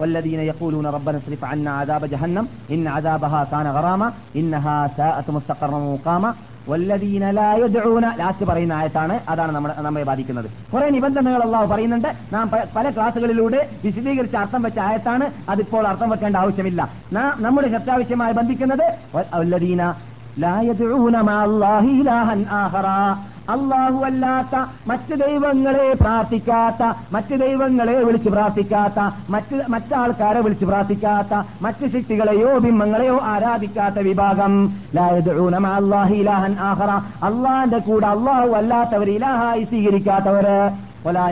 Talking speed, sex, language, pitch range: 120 wpm, male, Malayalam, 175-235 Hz